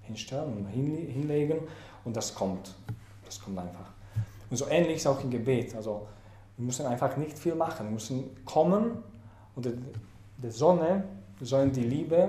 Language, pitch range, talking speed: English, 105-135 Hz, 155 wpm